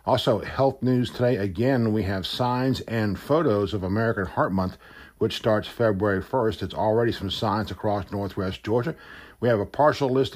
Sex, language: male, English